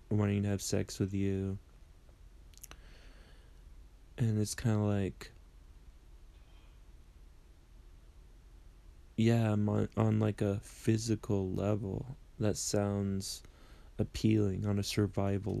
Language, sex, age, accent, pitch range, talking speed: English, male, 20-39, American, 70-105 Hz, 90 wpm